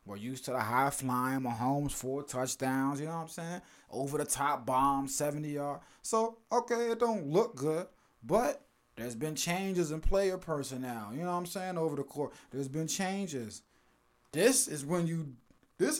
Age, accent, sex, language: 20-39, American, male, English